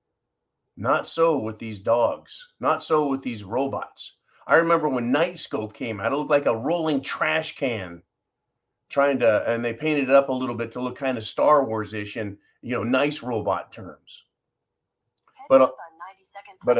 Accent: American